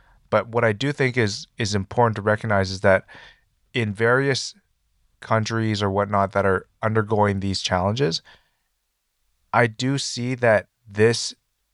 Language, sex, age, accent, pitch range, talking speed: English, male, 20-39, American, 100-120 Hz, 140 wpm